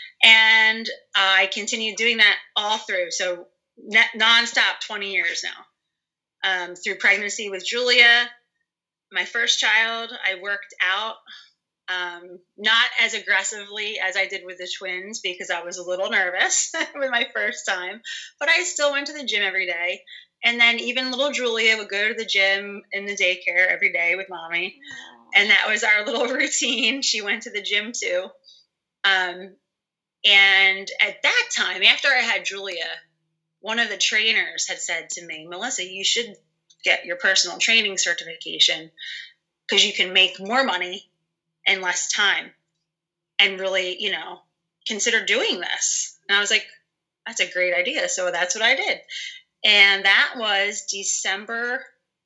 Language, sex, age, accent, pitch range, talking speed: English, female, 30-49, American, 180-230 Hz, 160 wpm